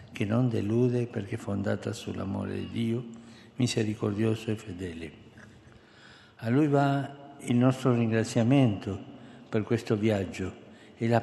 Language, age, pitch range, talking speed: Italian, 60-79, 110-130 Hz, 125 wpm